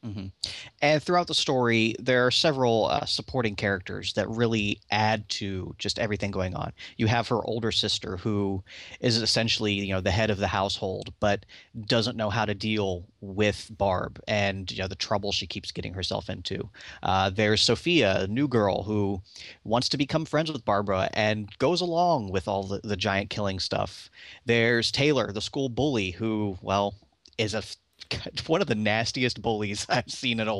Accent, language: American, English